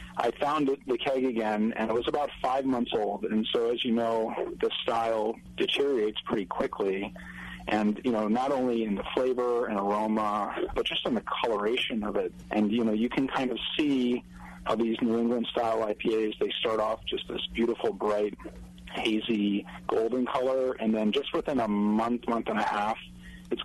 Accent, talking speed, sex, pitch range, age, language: American, 185 wpm, male, 105-125 Hz, 30-49, English